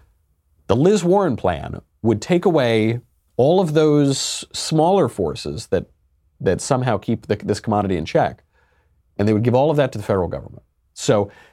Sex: male